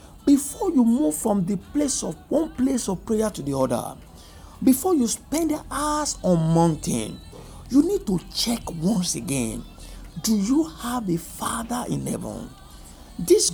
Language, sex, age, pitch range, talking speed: English, male, 60-79, 160-275 Hz, 155 wpm